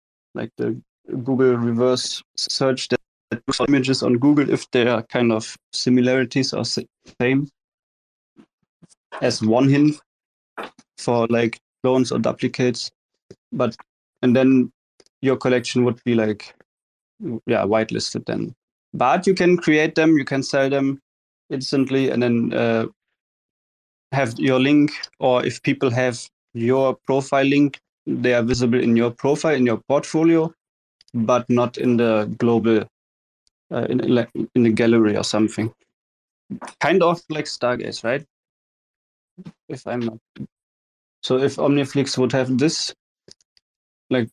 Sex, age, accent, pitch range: male, 20-39, German, 115-135 Hz